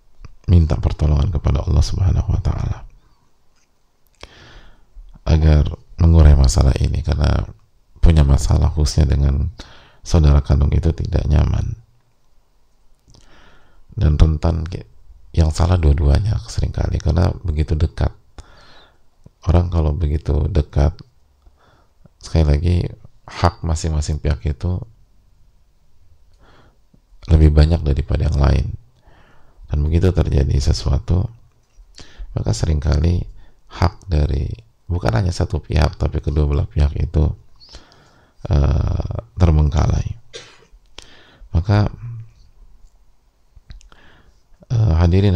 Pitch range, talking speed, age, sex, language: 75-95 Hz, 90 wpm, 30-49, male, English